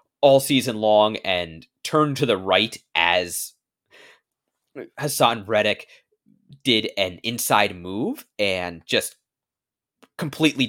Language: English